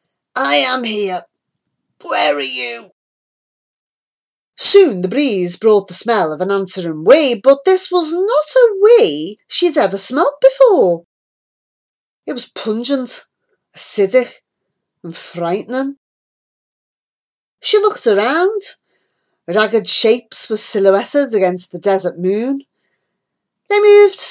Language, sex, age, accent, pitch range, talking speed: English, female, 30-49, British, 180-295 Hz, 110 wpm